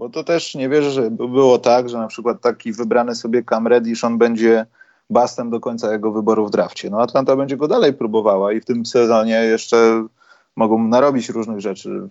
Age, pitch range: 30-49, 100-135 Hz